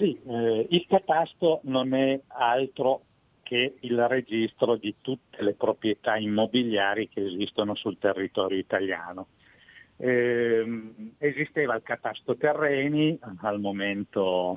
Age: 50-69